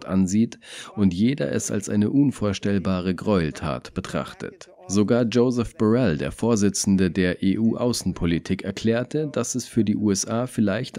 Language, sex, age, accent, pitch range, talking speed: German, male, 40-59, German, 95-115 Hz, 125 wpm